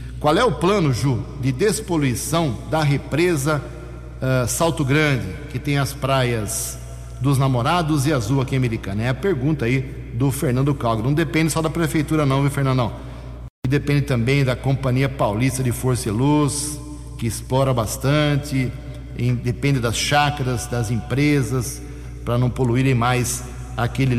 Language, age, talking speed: Portuguese, 60-79, 155 wpm